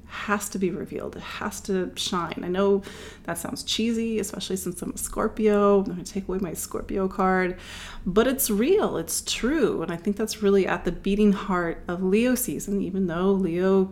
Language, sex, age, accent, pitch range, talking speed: English, female, 30-49, American, 180-205 Hz, 195 wpm